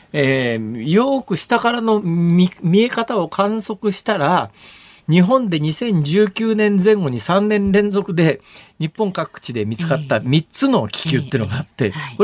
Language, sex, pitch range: Japanese, male, 145-215 Hz